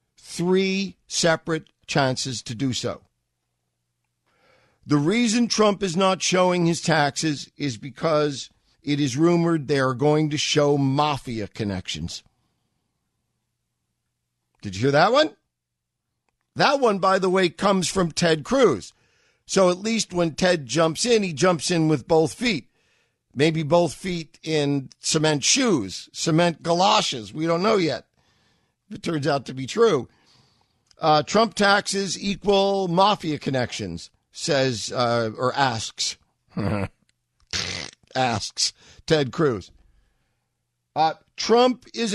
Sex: male